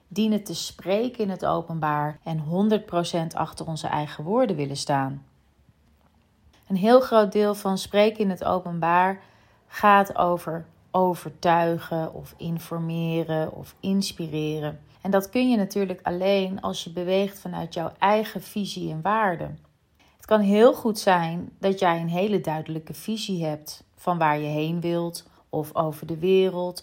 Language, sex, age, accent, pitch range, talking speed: Dutch, female, 30-49, Dutch, 160-195 Hz, 150 wpm